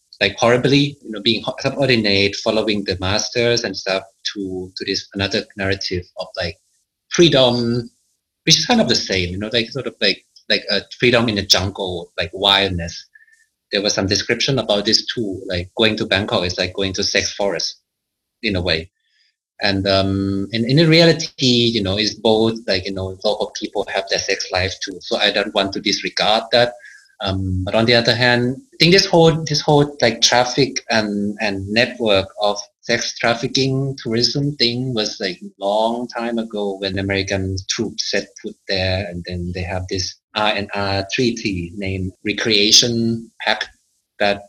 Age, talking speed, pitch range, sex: 30-49, 180 wpm, 100-120 Hz, male